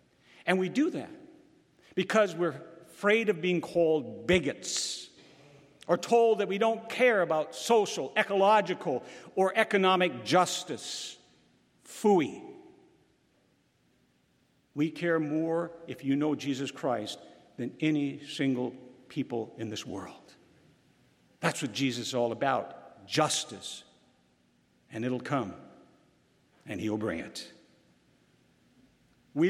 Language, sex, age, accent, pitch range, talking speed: English, male, 60-79, American, 140-195 Hz, 110 wpm